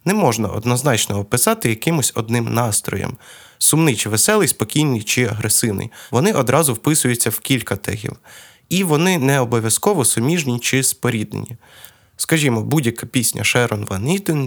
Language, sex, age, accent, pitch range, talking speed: Ukrainian, male, 20-39, native, 110-145 Hz, 135 wpm